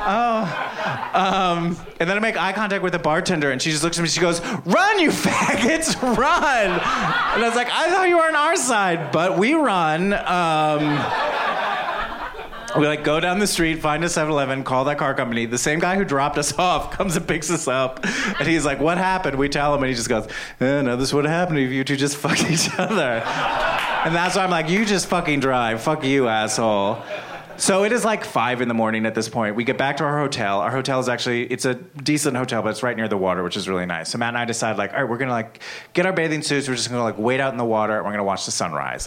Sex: male